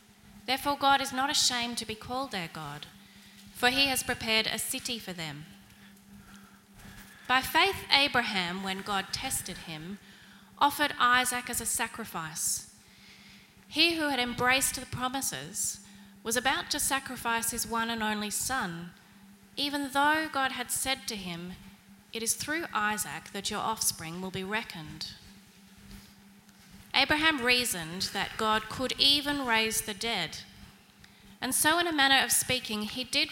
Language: English